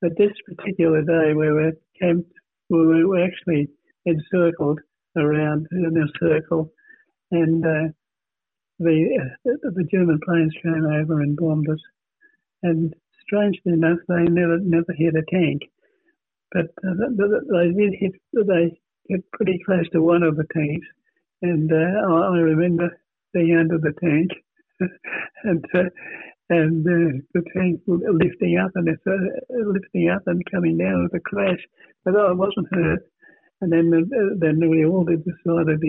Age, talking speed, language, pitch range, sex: 60-79, 150 wpm, English, 160-185 Hz, male